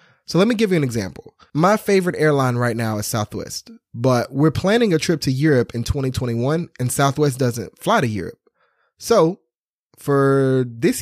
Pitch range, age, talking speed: 120-165 Hz, 20-39, 175 wpm